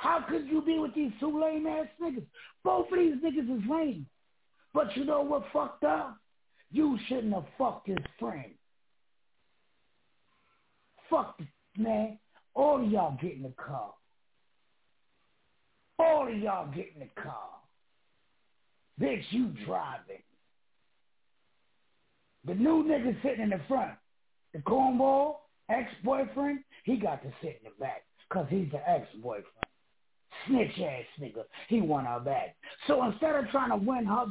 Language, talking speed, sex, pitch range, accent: English, 145 wpm, male, 200-300 Hz, American